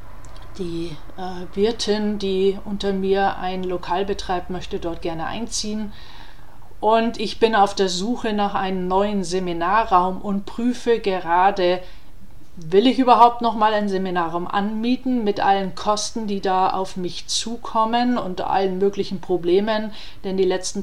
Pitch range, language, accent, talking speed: 180-215 Hz, German, German, 140 wpm